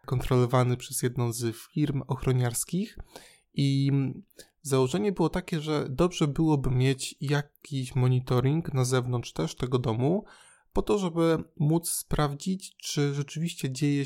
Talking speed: 125 wpm